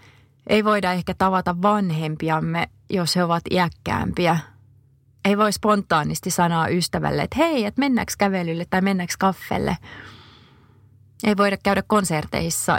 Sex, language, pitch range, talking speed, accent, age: female, Finnish, 130-195 Hz, 120 wpm, native, 30-49